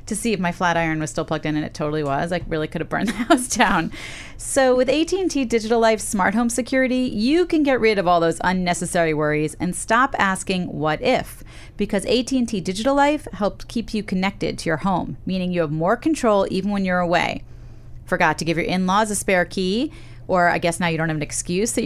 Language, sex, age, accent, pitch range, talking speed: English, female, 30-49, American, 175-245 Hz, 225 wpm